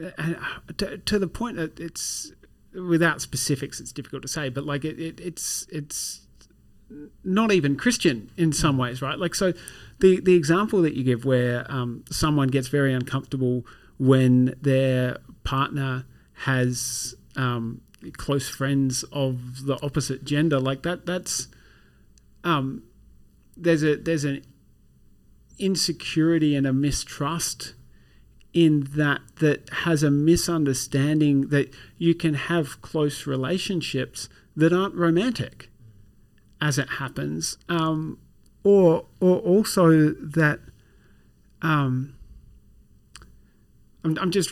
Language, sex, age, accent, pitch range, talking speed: English, male, 40-59, Australian, 125-160 Hz, 120 wpm